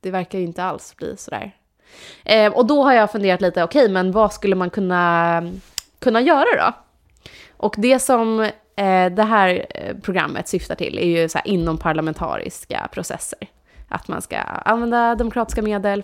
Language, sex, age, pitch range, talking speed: Swedish, female, 20-39, 170-210 Hz, 170 wpm